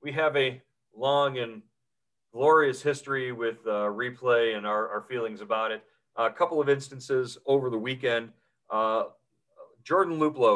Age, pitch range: 40-59, 110-140 Hz